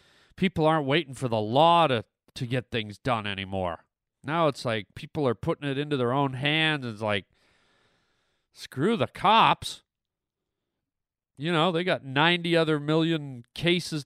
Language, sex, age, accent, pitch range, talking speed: English, male, 40-59, American, 130-170 Hz, 155 wpm